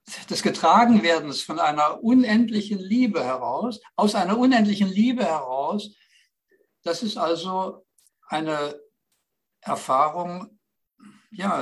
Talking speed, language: 95 wpm, English